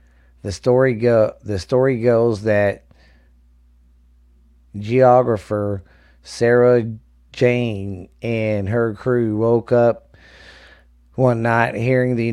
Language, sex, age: English, male, 40-59